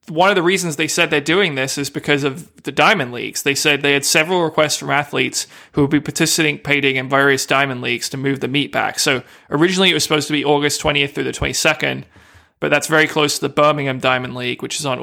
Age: 20-39